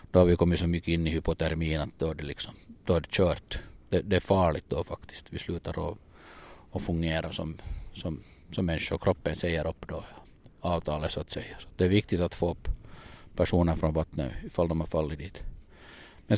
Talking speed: 200 wpm